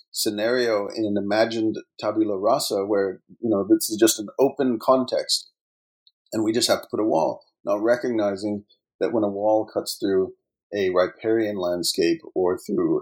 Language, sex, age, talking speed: English, male, 40-59, 165 wpm